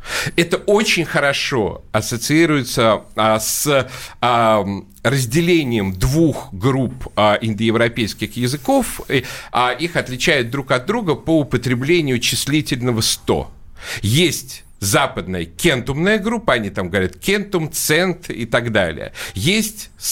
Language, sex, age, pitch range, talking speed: Russian, male, 50-69, 110-165 Hz, 95 wpm